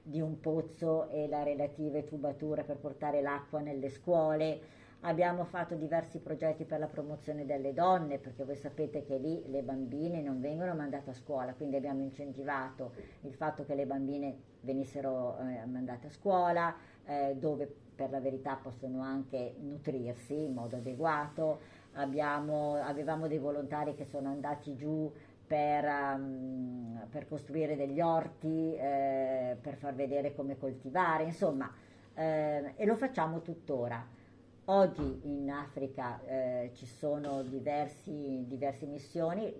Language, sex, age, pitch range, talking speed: Italian, female, 50-69, 135-155 Hz, 135 wpm